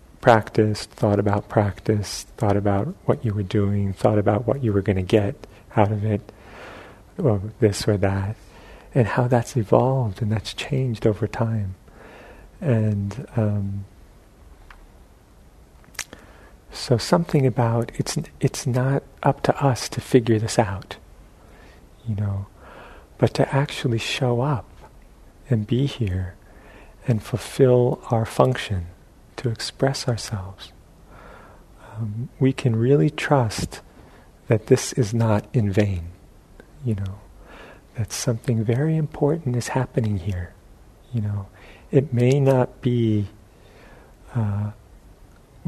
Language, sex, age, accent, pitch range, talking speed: English, male, 50-69, American, 100-125 Hz, 120 wpm